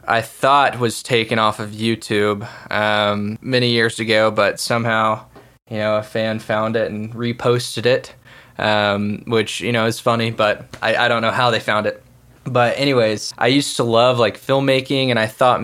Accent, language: American, English